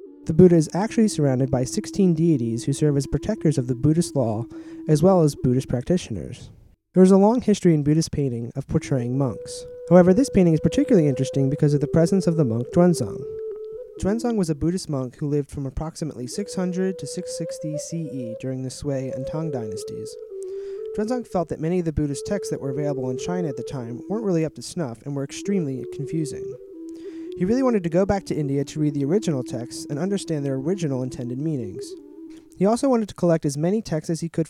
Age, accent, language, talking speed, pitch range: 30-49, American, English, 210 wpm, 145-210 Hz